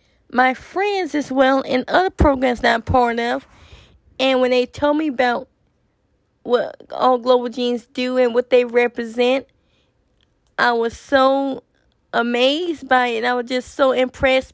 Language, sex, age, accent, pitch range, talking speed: English, female, 20-39, American, 240-270 Hz, 155 wpm